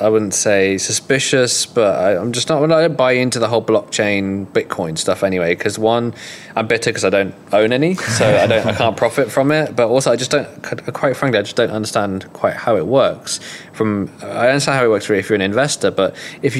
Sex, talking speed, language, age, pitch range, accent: male, 220 wpm, English, 20-39, 95-115 Hz, British